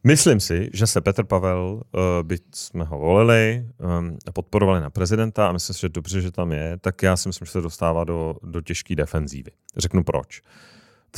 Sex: male